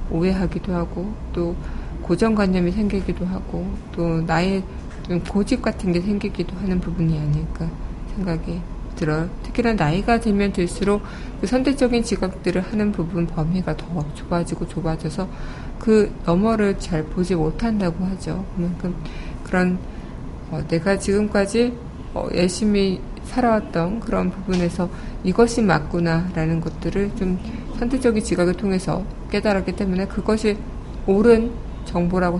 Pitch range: 170-200 Hz